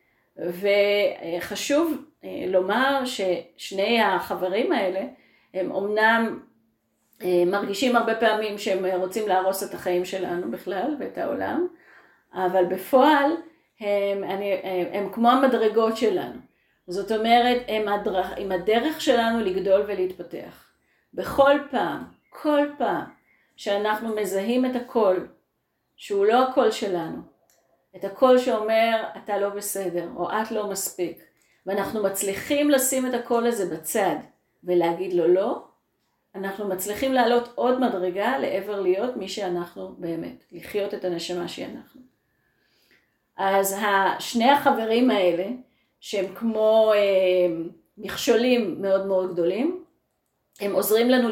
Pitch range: 185-235 Hz